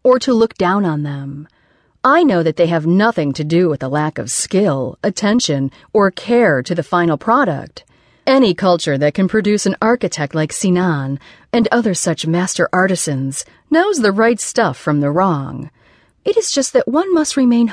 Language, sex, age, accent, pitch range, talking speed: English, female, 40-59, American, 155-240 Hz, 185 wpm